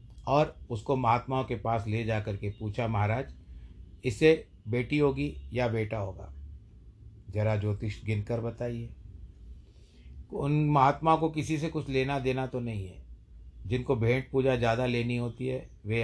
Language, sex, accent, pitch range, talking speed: Hindi, male, native, 100-115 Hz, 145 wpm